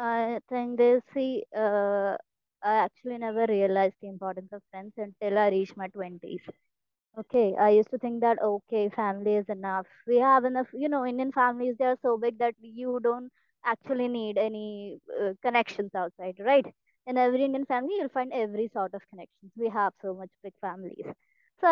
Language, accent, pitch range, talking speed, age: Hindi, native, 205-255 Hz, 185 wpm, 20-39